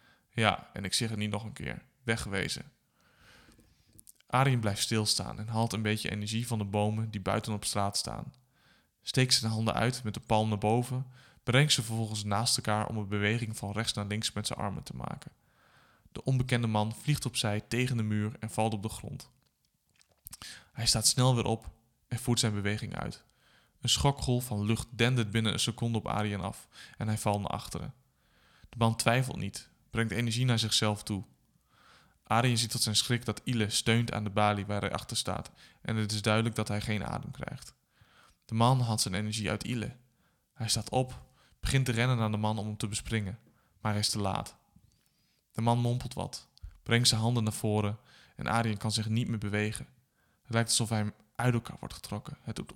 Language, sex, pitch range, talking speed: Dutch, male, 105-120 Hz, 200 wpm